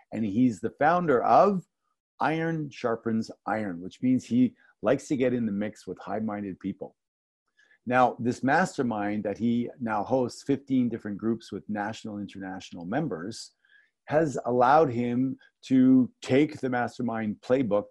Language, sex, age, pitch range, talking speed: English, male, 40-59, 105-140 Hz, 145 wpm